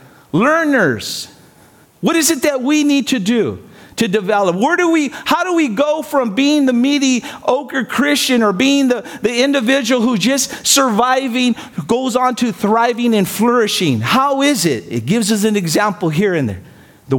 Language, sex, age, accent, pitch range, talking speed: English, male, 50-69, American, 210-270 Hz, 175 wpm